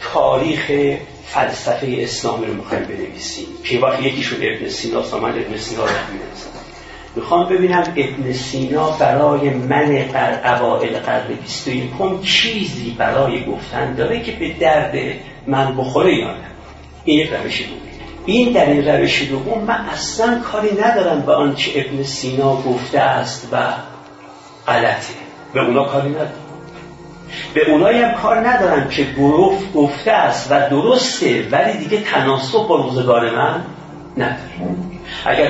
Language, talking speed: Persian, 140 wpm